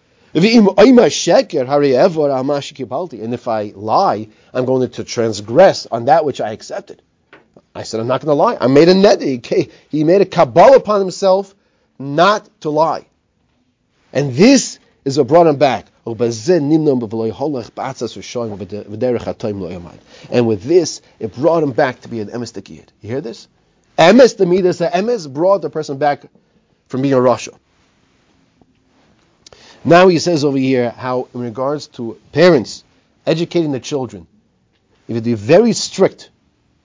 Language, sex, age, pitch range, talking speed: English, male, 40-59, 115-155 Hz, 135 wpm